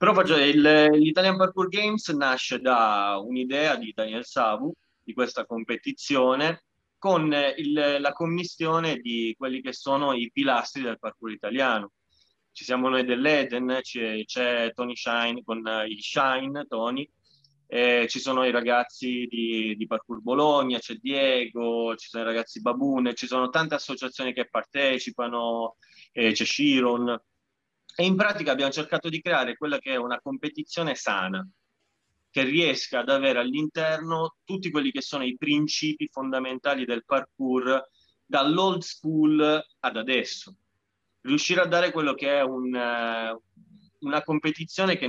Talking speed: 140 wpm